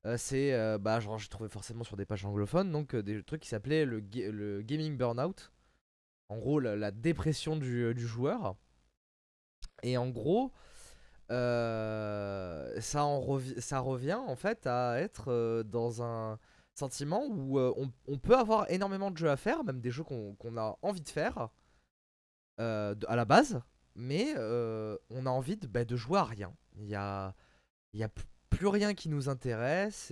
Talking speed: 190 wpm